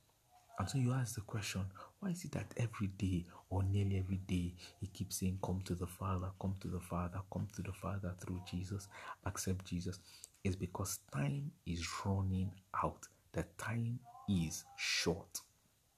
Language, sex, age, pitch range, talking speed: English, male, 50-69, 85-105 Hz, 170 wpm